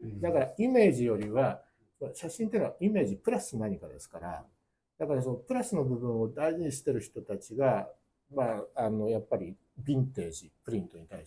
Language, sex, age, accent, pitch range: Japanese, male, 60-79, native, 115-195 Hz